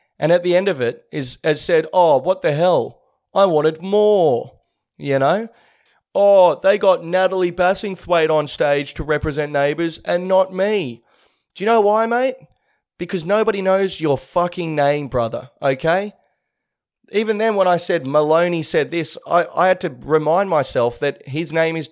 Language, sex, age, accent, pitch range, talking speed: English, male, 30-49, Australian, 140-195 Hz, 170 wpm